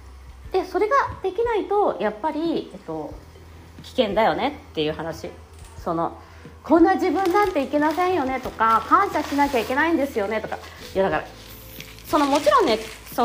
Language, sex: Japanese, female